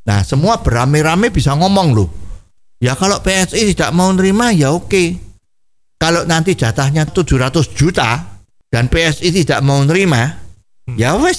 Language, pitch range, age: Indonesian, 120-190 Hz, 50-69